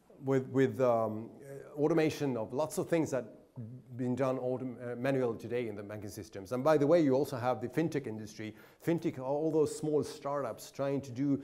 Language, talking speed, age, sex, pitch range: English, 205 wpm, 30-49, male, 120-155 Hz